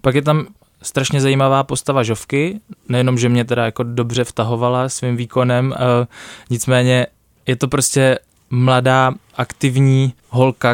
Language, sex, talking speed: Czech, male, 135 wpm